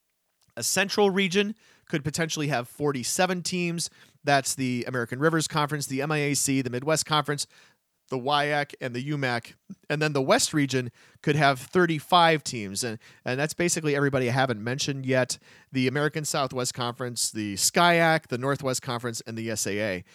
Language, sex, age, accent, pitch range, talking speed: English, male, 40-59, American, 120-155 Hz, 160 wpm